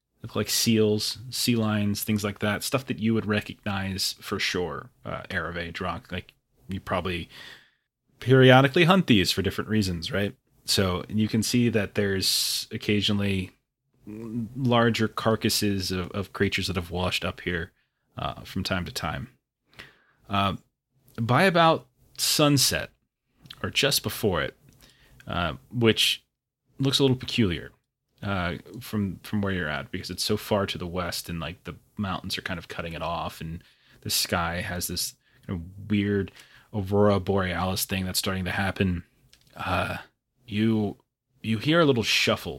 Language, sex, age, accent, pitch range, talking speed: English, male, 30-49, American, 90-115 Hz, 155 wpm